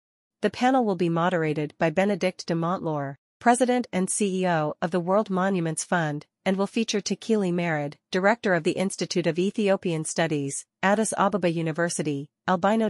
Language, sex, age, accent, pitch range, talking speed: English, female, 40-59, American, 160-195 Hz, 155 wpm